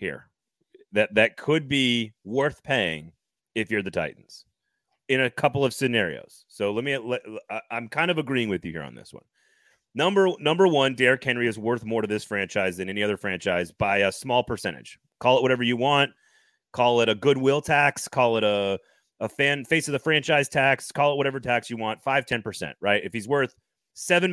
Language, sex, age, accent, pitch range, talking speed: English, male, 30-49, American, 110-145 Hz, 200 wpm